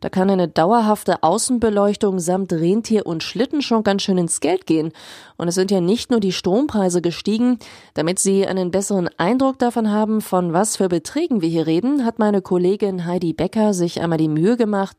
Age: 30-49